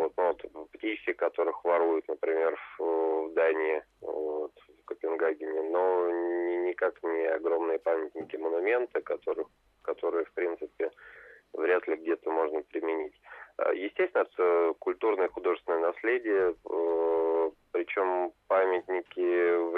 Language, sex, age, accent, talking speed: Russian, male, 20-39, native, 95 wpm